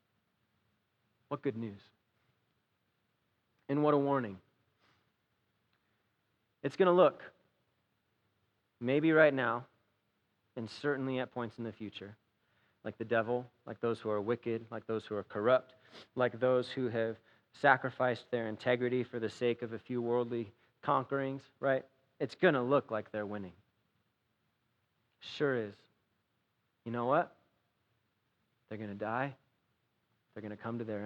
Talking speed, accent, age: 135 wpm, American, 30-49